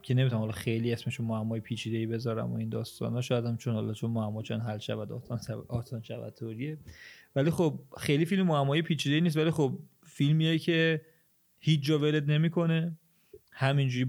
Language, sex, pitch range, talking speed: Persian, male, 115-135 Hz, 165 wpm